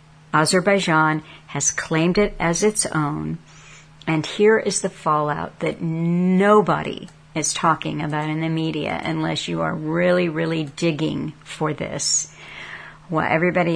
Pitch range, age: 155-175 Hz, 50-69